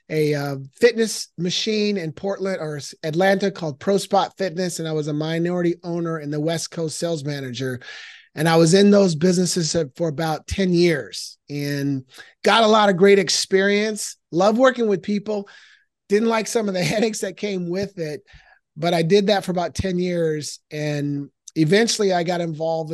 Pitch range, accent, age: 160-200 Hz, American, 30-49